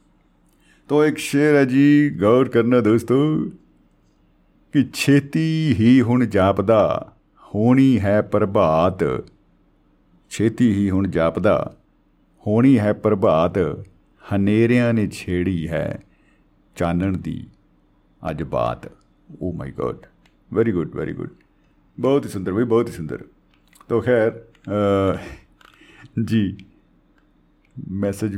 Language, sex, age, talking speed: Punjabi, male, 50-69, 105 wpm